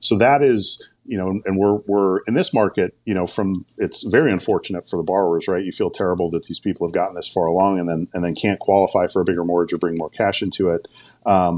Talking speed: 255 wpm